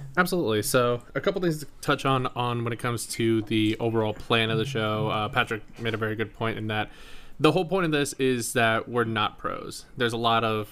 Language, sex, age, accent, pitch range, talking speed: English, male, 20-39, American, 110-120 Hz, 235 wpm